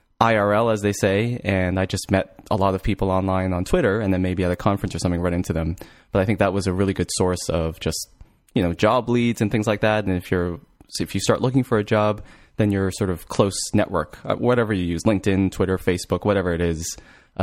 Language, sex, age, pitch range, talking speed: English, male, 20-39, 90-105 Hz, 250 wpm